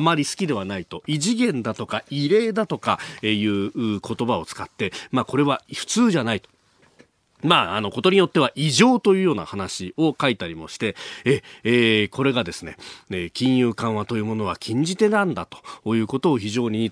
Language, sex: Japanese, male